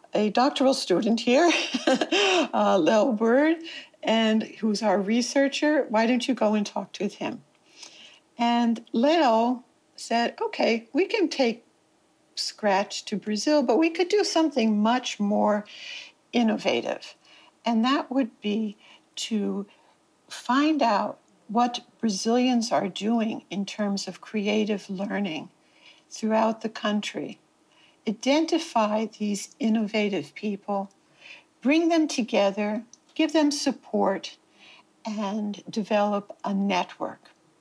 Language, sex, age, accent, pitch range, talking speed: English, female, 60-79, American, 210-300 Hz, 110 wpm